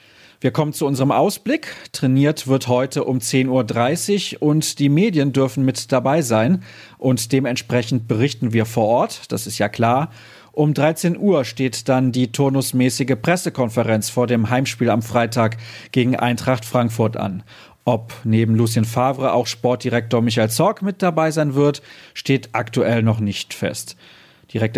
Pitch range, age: 120-155 Hz, 40-59